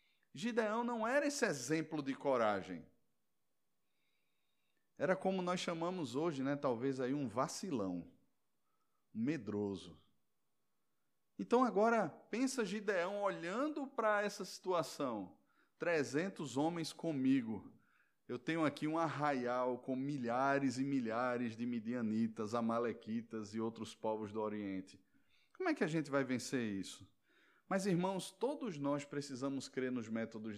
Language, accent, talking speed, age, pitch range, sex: Portuguese, Brazilian, 120 wpm, 20-39, 135-210 Hz, male